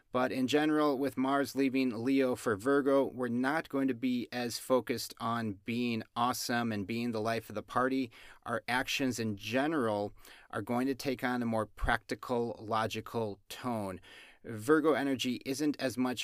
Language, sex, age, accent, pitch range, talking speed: English, male, 30-49, American, 110-130 Hz, 165 wpm